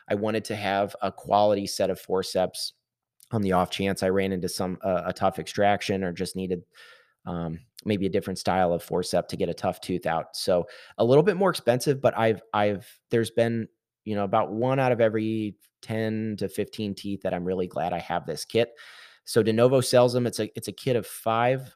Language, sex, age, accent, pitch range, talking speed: English, male, 30-49, American, 95-110 Hz, 215 wpm